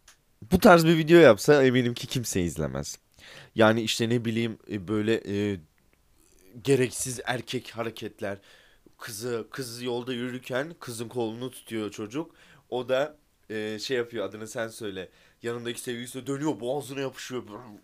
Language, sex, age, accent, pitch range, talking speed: Turkish, male, 30-49, native, 90-130 Hz, 130 wpm